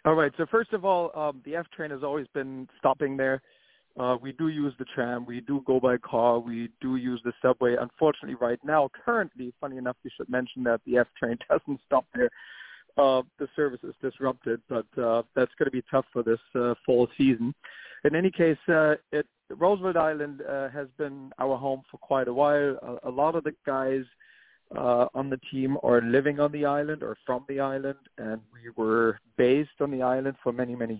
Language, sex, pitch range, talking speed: English, male, 125-155 Hz, 210 wpm